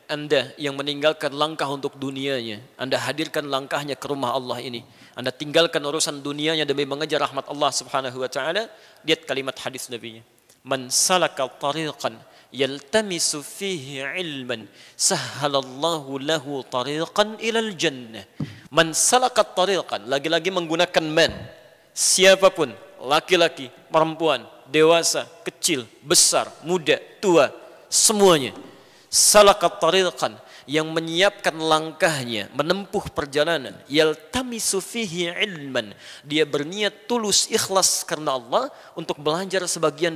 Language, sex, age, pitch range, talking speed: Indonesian, male, 40-59, 140-170 Hz, 105 wpm